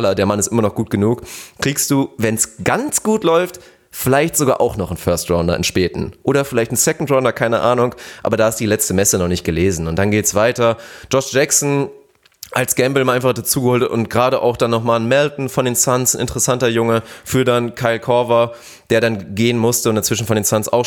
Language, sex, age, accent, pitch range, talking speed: German, male, 30-49, German, 110-130 Hz, 215 wpm